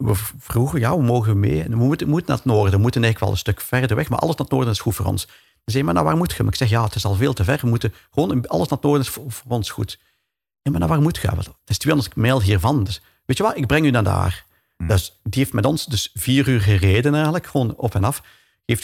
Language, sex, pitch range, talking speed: Dutch, male, 95-125 Hz, 295 wpm